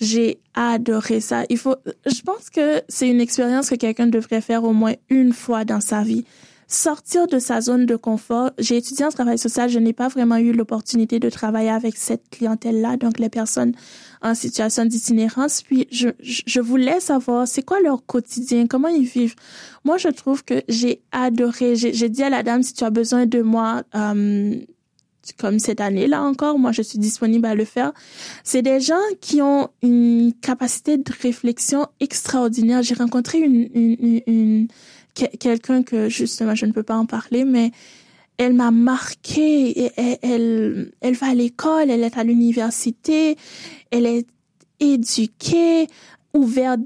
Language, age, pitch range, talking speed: French, 20-39, 230-265 Hz, 175 wpm